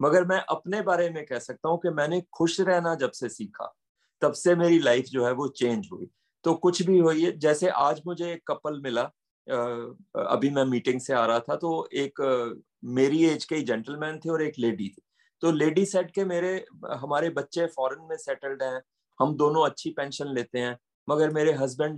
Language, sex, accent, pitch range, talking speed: Hindi, male, native, 135-180 Hz, 195 wpm